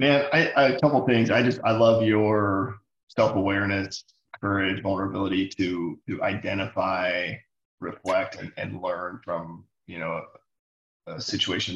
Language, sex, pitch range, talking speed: English, male, 95-120 Hz, 145 wpm